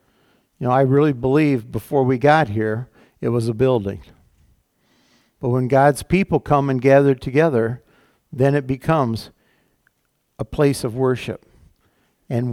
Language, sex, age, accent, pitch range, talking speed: English, male, 60-79, American, 125-160 Hz, 140 wpm